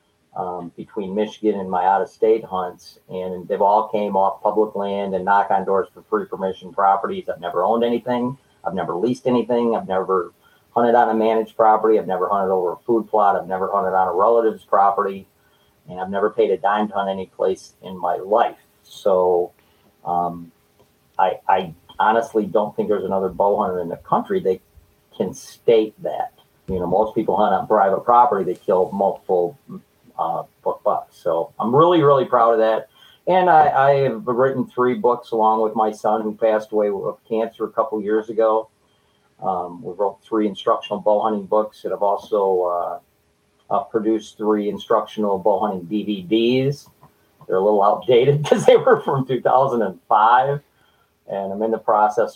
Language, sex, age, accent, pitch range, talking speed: English, male, 40-59, American, 95-115 Hz, 180 wpm